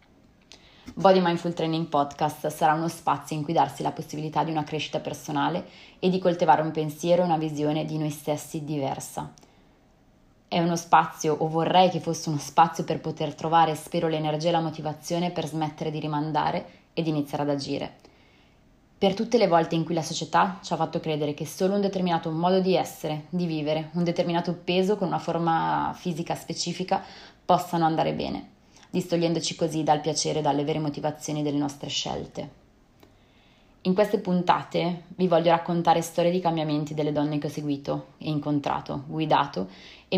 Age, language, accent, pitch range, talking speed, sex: 20-39, Italian, native, 155-170 Hz, 170 wpm, female